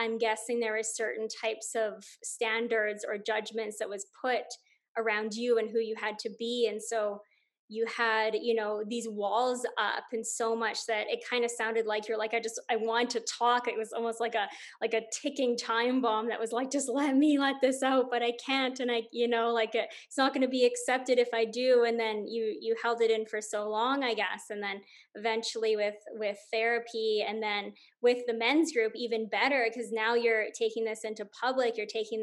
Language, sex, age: English, female, 20-39